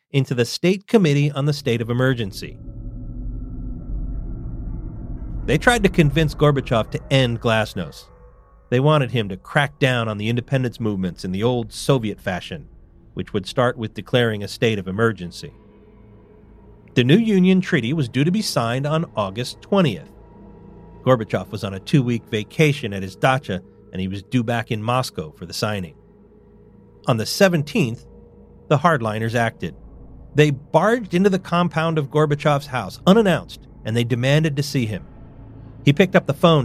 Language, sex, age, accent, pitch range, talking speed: English, male, 40-59, American, 110-150 Hz, 160 wpm